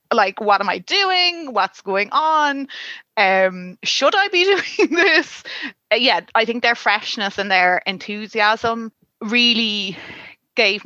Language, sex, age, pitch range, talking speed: English, female, 30-49, 195-240 Hz, 140 wpm